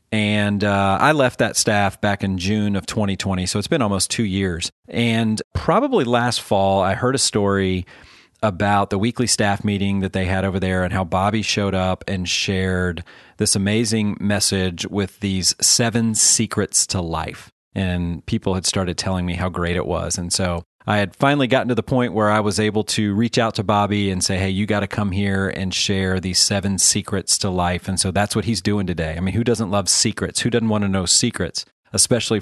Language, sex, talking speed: English, male, 210 wpm